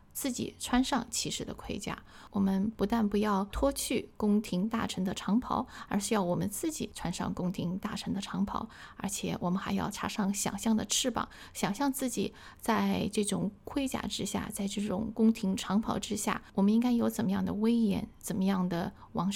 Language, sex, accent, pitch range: Chinese, female, native, 200-230 Hz